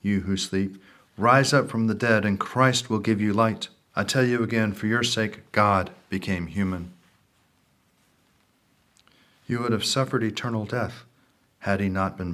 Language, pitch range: English, 90-110 Hz